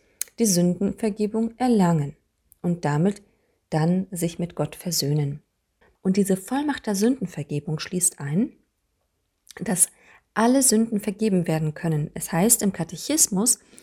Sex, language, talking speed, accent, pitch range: female, German, 115 wpm, German, 165-215 Hz